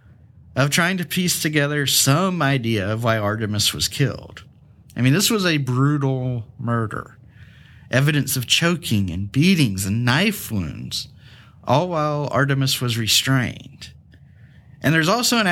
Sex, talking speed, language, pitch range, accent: male, 140 wpm, English, 115-145 Hz, American